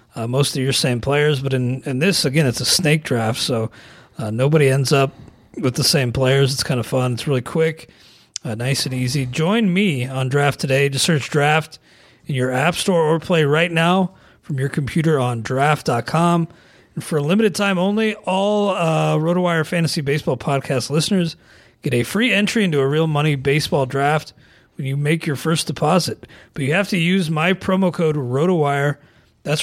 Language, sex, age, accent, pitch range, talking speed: English, male, 40-59, American, 135-170 Hz, 195 wpm